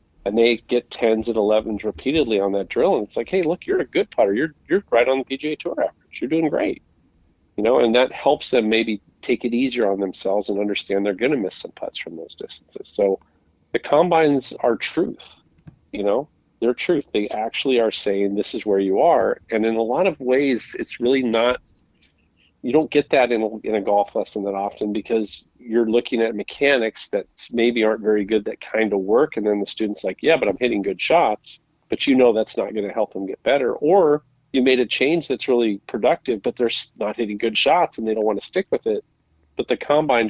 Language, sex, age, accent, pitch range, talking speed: English, male, 40-59, American, 100-130 Hz, 225 wpm